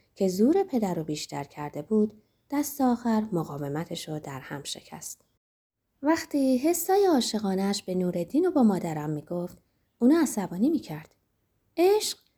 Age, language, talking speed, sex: 20-39, Persian, 130 wpm, female